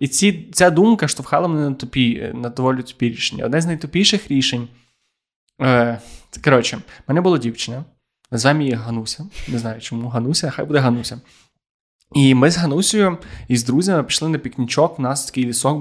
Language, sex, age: Ukrainian, male, 20-39